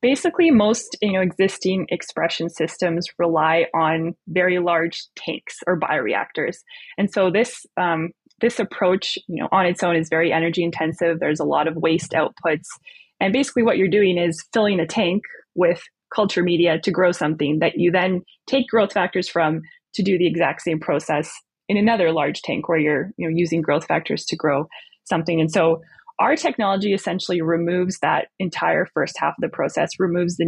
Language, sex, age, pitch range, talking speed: English, female, 20-39, 165-200 Hz, 180 wpm